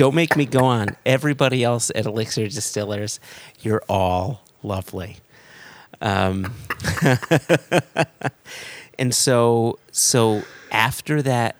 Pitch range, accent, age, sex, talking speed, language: 95-120 Hz, American, 30-49, male, 100 wpm, English